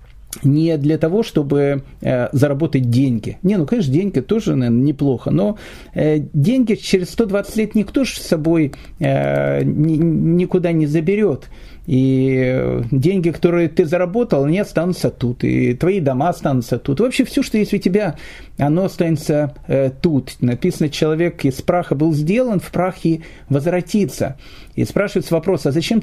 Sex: male